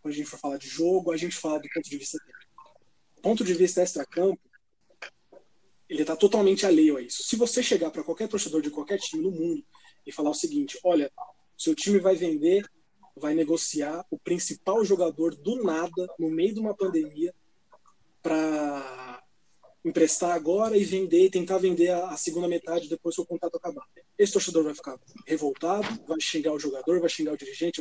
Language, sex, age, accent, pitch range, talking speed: Portuguese, male, 20-39, Brazilian, 165-205 Hz, 185 wpm